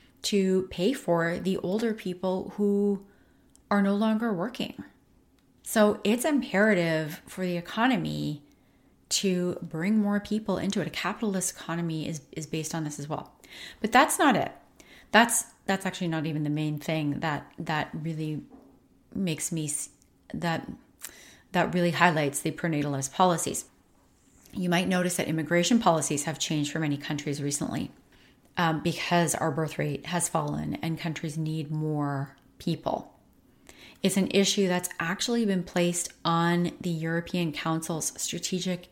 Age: 30-49